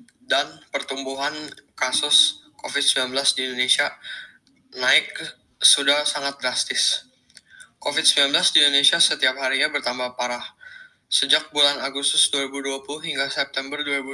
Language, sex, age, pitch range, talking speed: Indonesian, male, 10-29, 130-145 Hz, 100 wpm